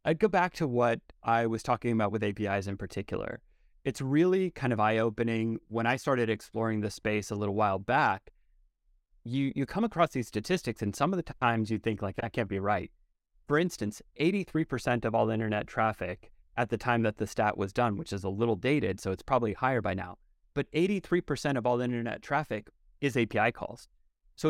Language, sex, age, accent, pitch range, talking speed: English, male, 30-49, American, 110-140 Hz, 200 wpm